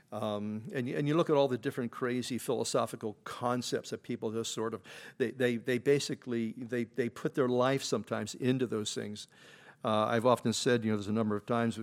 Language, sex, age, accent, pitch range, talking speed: English, male, 50-69, American, 115-145 Hz, 215 wpm